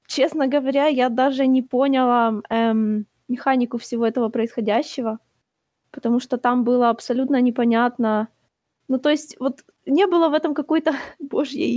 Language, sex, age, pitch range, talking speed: Ukrainian, female, 20-39, 235-295 Hz, 140 wpm